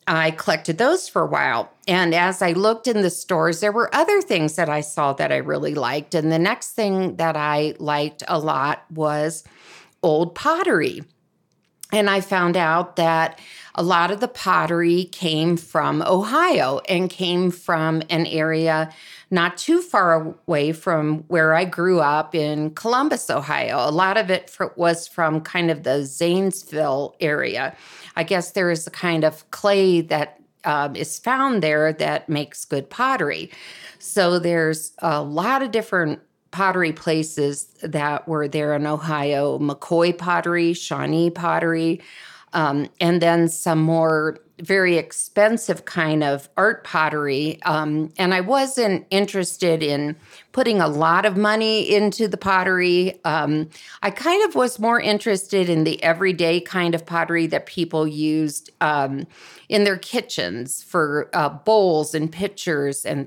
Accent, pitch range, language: American, 155-190 Hz, English